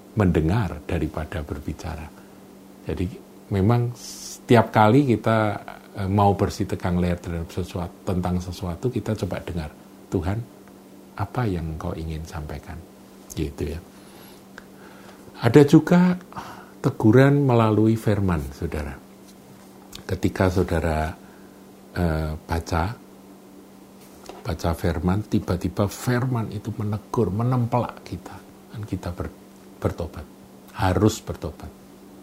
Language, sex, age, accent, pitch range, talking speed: Indonesian, male, 50-69, native, 85-105 Hz, 90 wpm